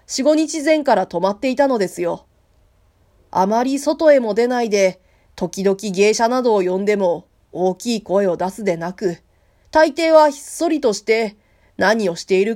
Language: Japanese